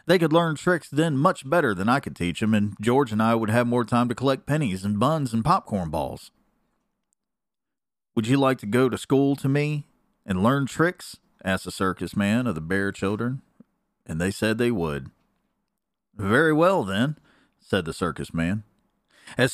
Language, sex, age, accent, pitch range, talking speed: English, male, 40-59, American, 105-145 Hz, 185 wpm